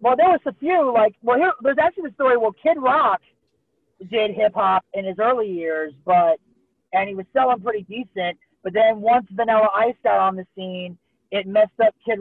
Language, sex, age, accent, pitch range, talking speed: English, male, 40-59, American, 180-225 Hz, 195 wpm